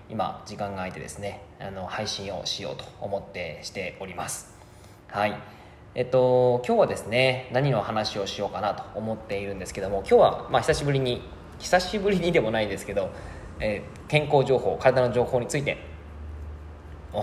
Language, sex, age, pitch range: Japanese, male, 20-39, 100-135 Hz